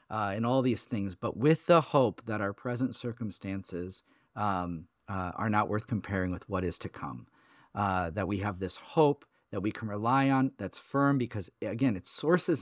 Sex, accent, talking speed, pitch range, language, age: male, American, 195 wpm, 100-130 Hz, English, 40-59